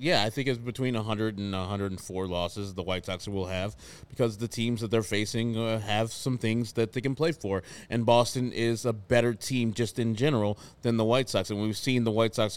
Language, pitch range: English, 100-120 Hz